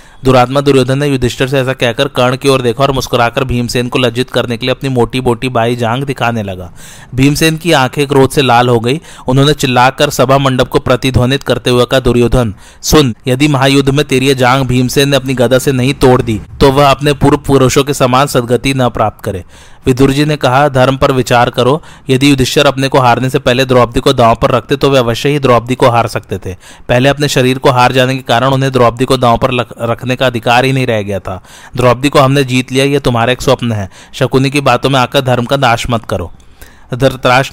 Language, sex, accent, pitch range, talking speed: Hindi, male, native, 120-140 Hz, 215 wpm